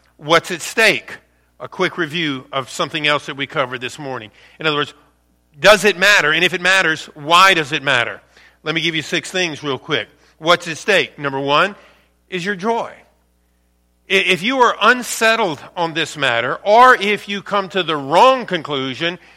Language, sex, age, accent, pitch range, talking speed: English, male, 50-69, American, 155-220 Hz, 185 wpm